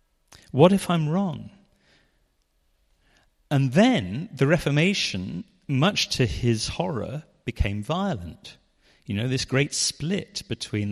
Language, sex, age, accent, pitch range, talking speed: English, male, 40-59, British, 100-155 Hz, 110 wpm